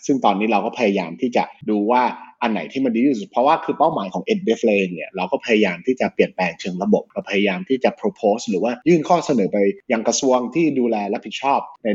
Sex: male